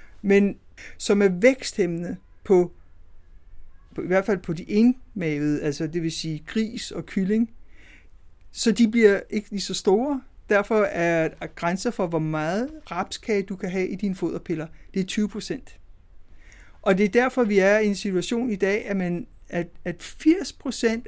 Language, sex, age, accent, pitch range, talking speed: Danish, male, 60-79, native, 165-215 Hz, 170 wpm